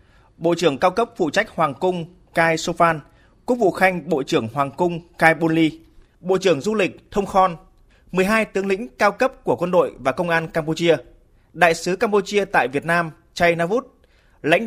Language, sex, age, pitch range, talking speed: Vietnamese, male, 20-39, 160-200 Hz, 190 wpm